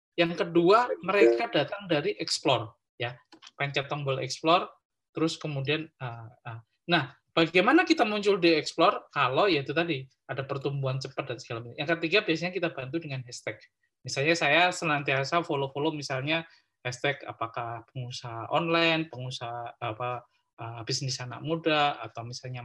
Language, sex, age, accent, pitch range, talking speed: Indonesian, male, 20-39, native, 125-165 Hz, 145 wpm